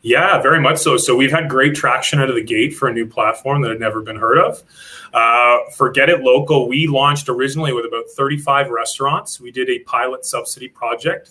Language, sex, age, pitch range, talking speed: English, male, 30-49, 120-145 Hz, 210 wpm